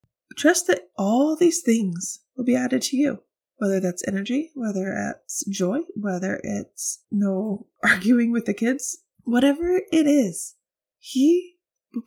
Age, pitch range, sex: 20-39, 190-265 Hz, female